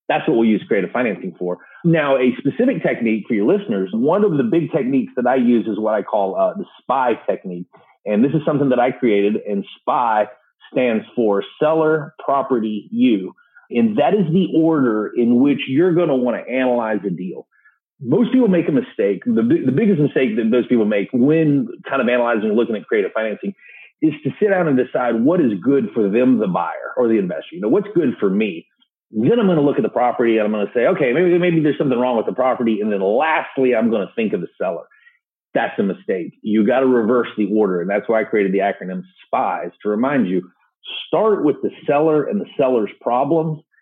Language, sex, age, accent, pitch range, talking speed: English, male, 40-59, American, 110-175 Hz, 220 wpm